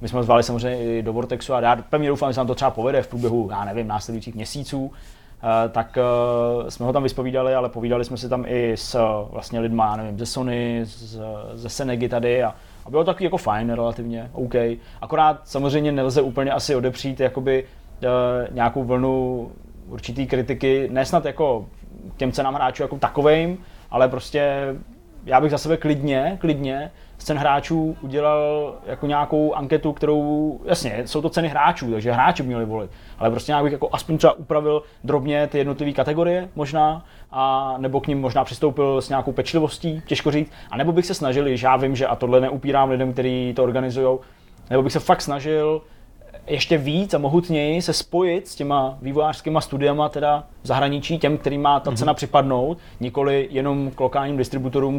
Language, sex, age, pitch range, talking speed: Czech, male, 20-39, 125-150 Hz, 180 wpm